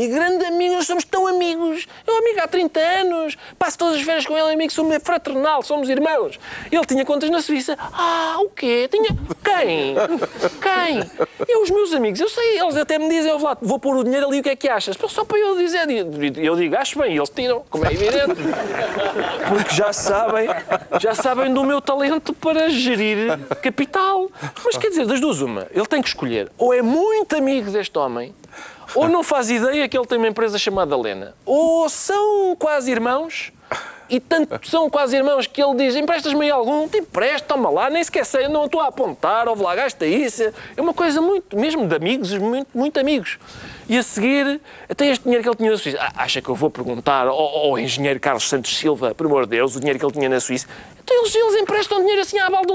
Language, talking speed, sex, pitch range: Portuguese, 215 wpm, male, 230-335 Hz